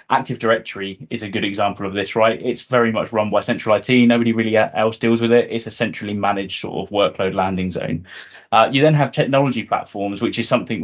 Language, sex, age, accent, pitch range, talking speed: English, male, 10-29, British, 105-120 Hz, 220 wpm